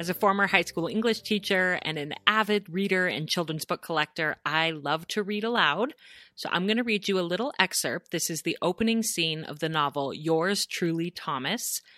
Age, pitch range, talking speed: 30-49, 150-200 Hz, 200 wpm